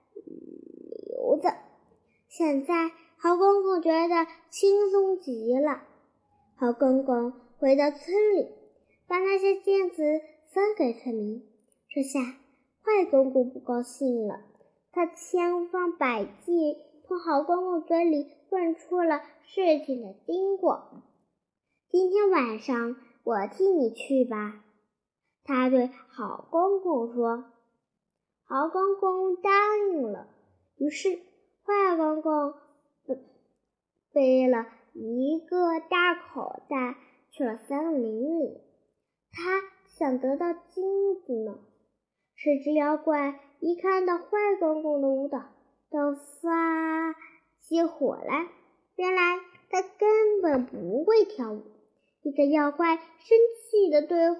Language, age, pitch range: Chinese, 10-29, 265-360 Hz